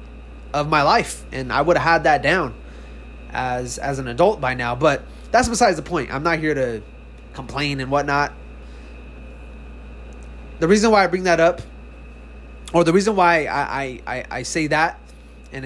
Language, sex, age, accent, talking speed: English, male, 20-39, American, 175 wpm